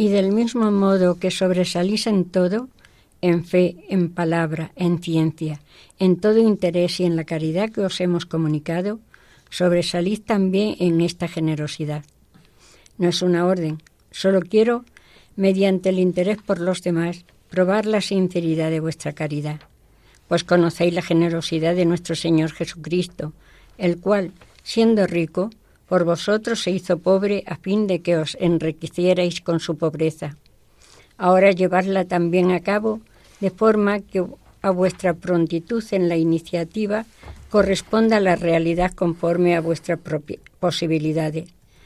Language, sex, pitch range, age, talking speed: Spanish, female, 165-190 Hz, 60-79, 135 wpm